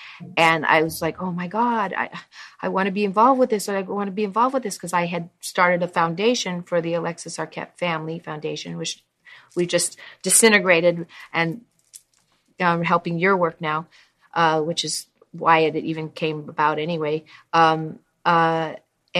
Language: English